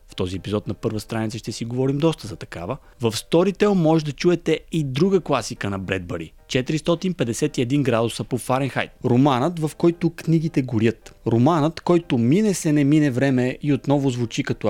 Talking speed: 165 wpm